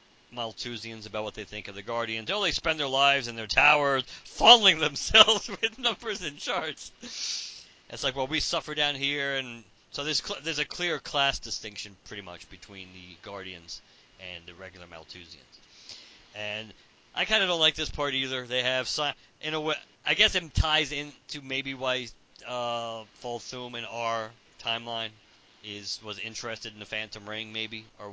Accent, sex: American, male